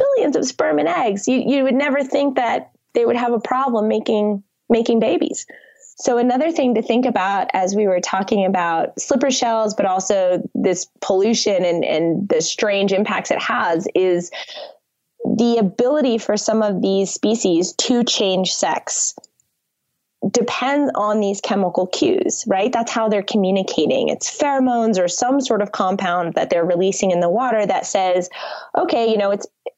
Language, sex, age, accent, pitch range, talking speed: English, female, 20-39, American, 190-250 Hz, 165 wpm